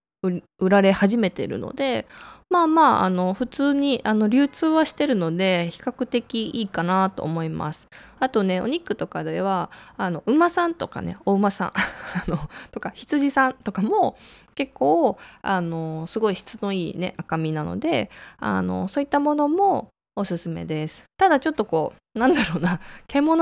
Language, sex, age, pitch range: Japanese, female, 20-39, 175-265 Hz